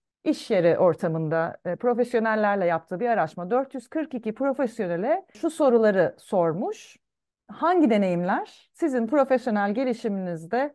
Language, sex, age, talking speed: Turkish, female, 40-59, 95 wpm